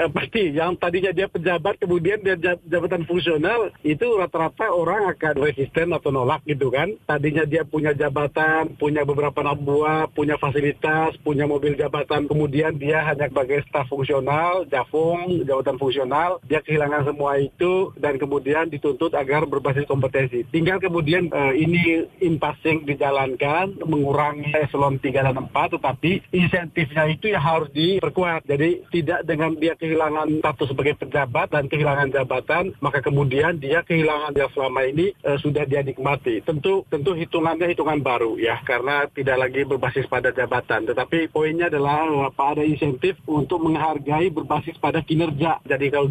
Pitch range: 145-170 Hz